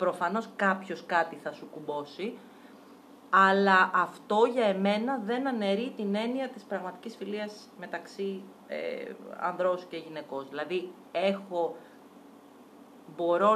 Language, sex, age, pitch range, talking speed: Greek, female, 30-49, 175-245 Hz, 100 wpm